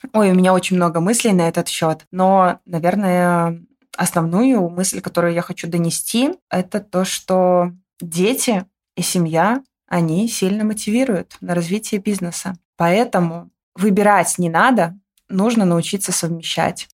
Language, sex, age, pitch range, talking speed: Russian, female, 20-39, 170-205 Hz, 130 wpm